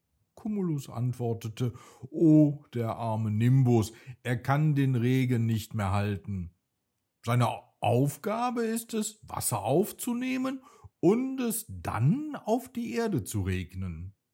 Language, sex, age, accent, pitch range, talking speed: German, male, 50-69, German, 105-155 Hz, 115 wpm